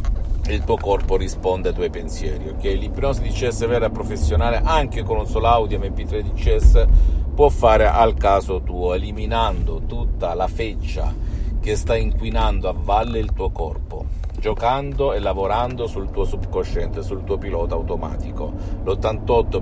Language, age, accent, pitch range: Italian, 50-69, native, 80-110 Hz